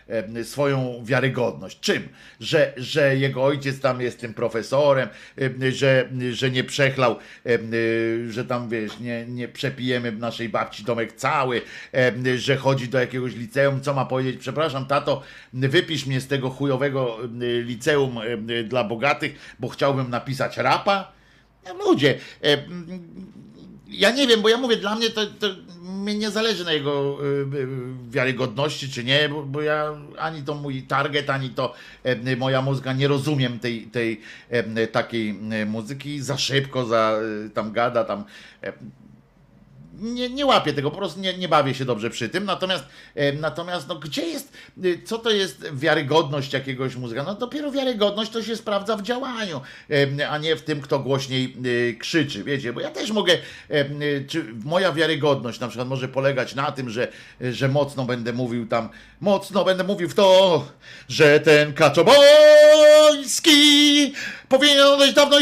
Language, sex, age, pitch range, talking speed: Polish, male, 50-69, 125-195 Hz, 160 wpm